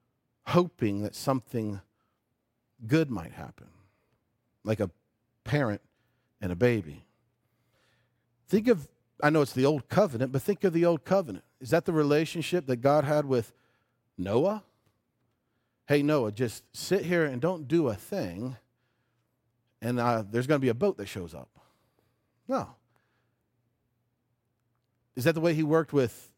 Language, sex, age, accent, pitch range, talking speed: English, male, 50-69, American, 115-160 Hz, 145 wpm